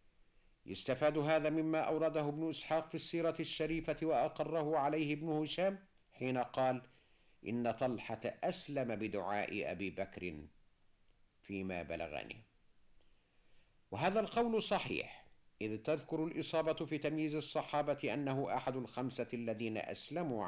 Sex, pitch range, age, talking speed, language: male, 95-160 Hz, 50-69, 110 wpm, Arabic